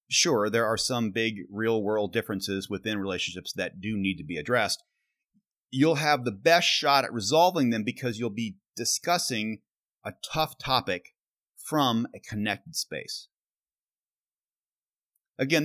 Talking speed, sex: 135 wpm, male